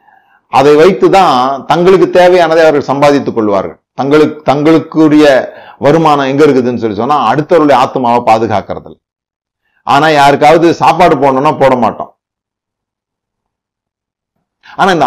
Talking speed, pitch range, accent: 95 wpm, 115-155 Hz, native